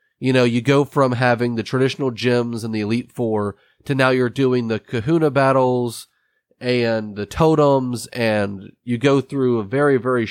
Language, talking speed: English, 175 wpm